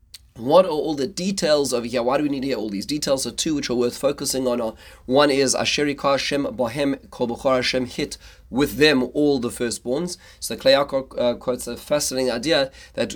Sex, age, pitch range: male, 30-49, 105-135 Hz